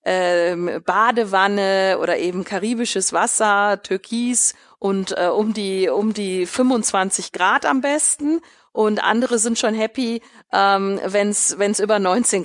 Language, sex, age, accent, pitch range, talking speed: German, female, 40-59, German, 175-215 Hz, 135 wpm